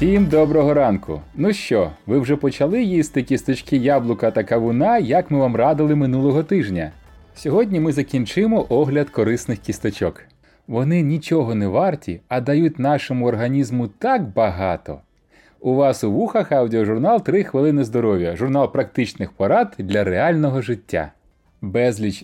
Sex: male